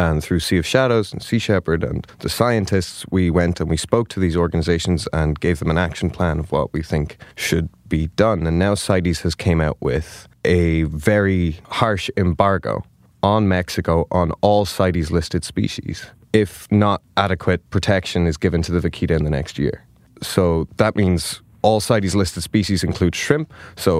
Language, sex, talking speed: English, male, 180 wpm